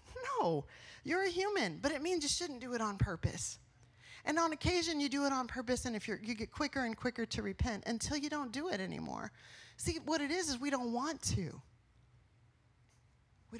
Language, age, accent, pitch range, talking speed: English, 30-49, American, 160-260 Hz, 205 wpm